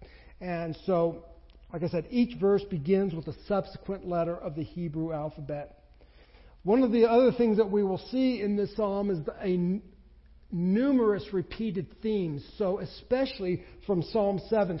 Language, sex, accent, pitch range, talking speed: English, male, American, 165-210 Hz, 150 wpm